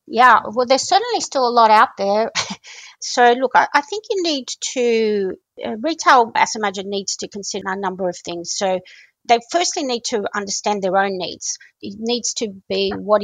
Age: 50-69